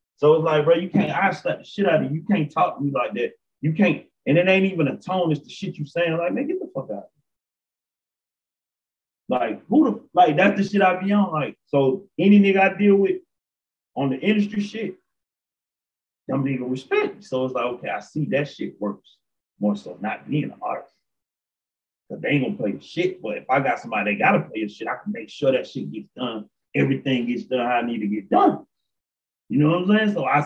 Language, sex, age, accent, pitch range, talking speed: English, male, 30-49, American, 130-195 Hz, 240 wpm